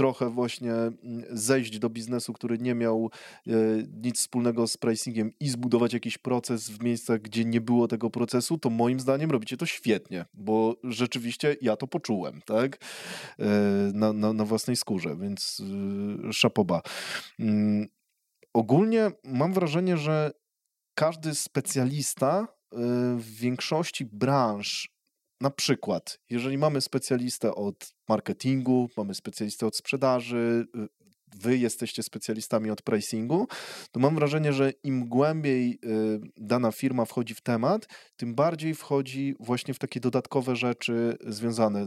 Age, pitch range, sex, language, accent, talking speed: 20-39, 110-130 Hz, male, Polish, native, 125 wpm